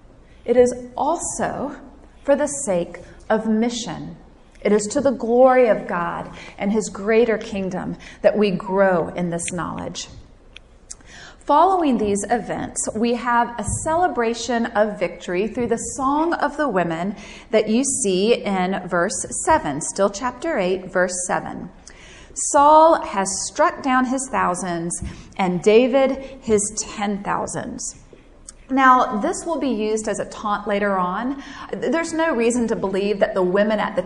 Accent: American